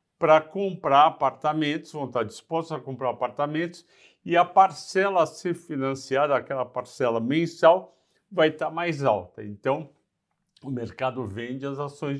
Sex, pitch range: male, 130-160 Hz